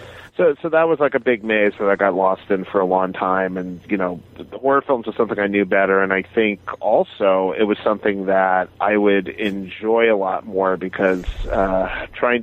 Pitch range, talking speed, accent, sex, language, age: 95-115 Hz, 215 wpm, American, male, English, 40-59